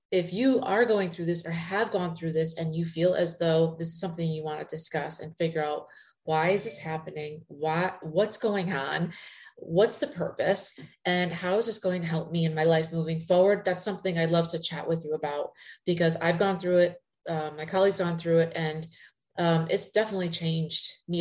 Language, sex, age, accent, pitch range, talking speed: English, female, 30-49, American, 160-185 Hz, 215 wpm